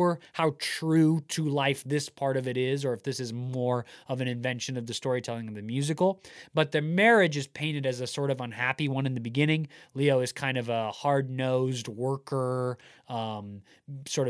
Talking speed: 195 wpm